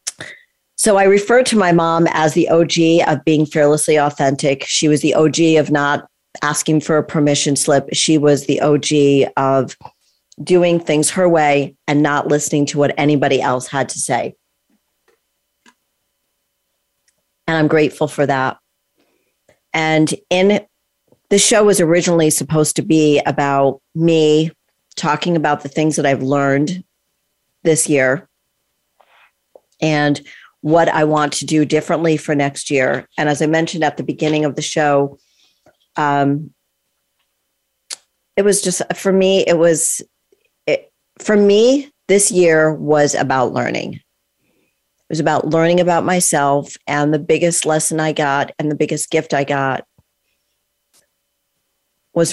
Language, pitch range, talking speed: English, 145-165 Hz, 140 wpm